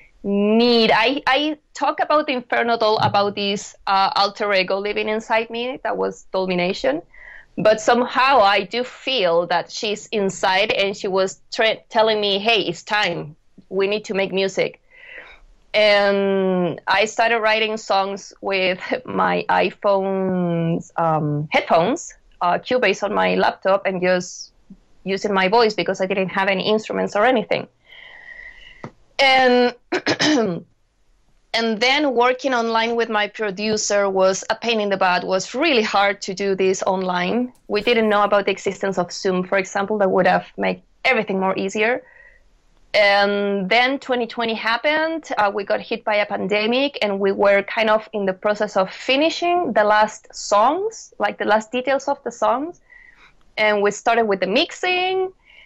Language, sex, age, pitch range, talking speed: English, female, 20-39, 195-240 Hz, 150 wpm